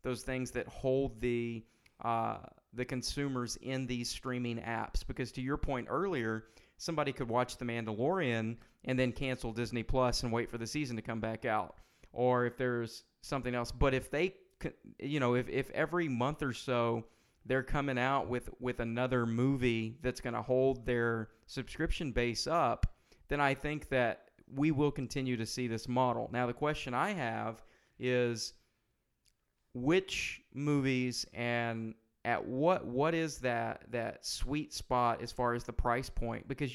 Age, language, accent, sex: 40-59, English, American, male